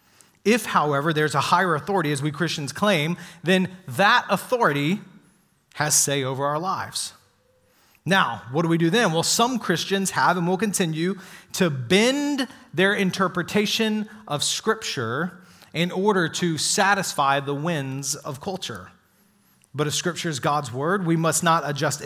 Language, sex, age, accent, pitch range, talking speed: English, male, 30-49, American, 145-195 Hz, 150 wpm